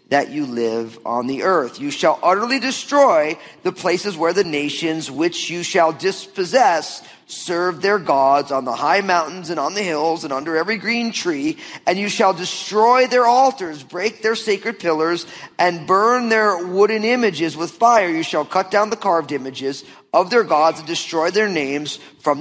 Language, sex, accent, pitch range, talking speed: English, male, American, 155-225 Hz, 180 wpm